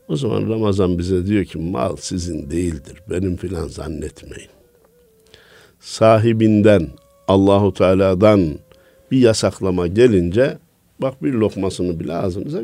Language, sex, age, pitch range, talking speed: Turkish, male, 60-79, 90-115 Hz, 110 wpm